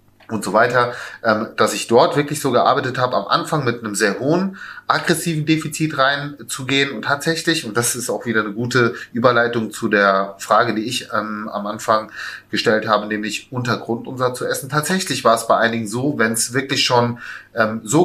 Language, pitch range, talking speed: German, 110-145 Hz, 175 wpm